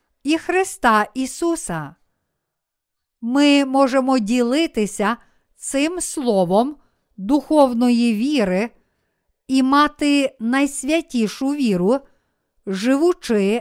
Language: Ukrainian